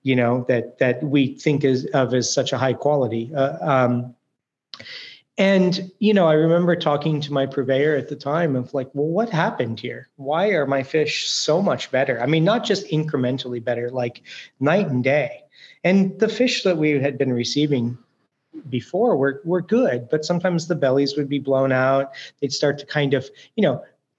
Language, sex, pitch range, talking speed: English, male, 125-155 Hz, 195 wpm